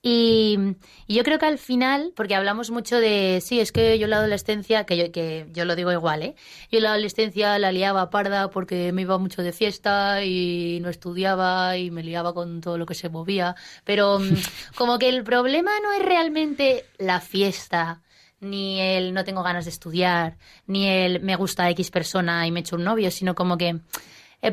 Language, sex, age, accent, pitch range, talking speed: Spanish, female, 20-39, Spanish, 180-230 Hz, 200 wpm